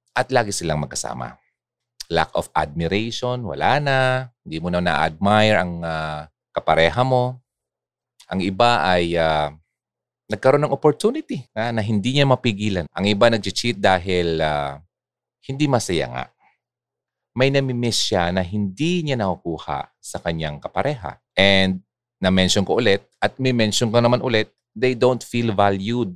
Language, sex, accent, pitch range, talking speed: Filipino, male, native, 85-120 Hz, 140 wpm